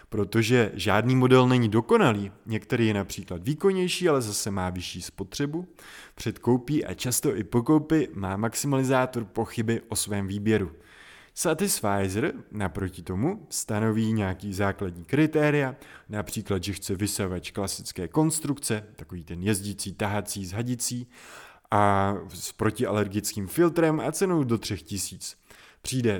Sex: male